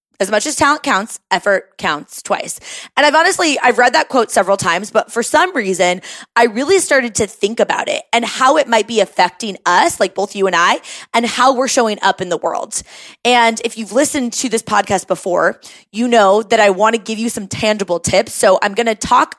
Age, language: 20-39, English